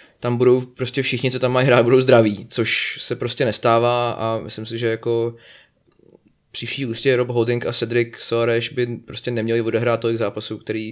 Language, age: Czech, 20-39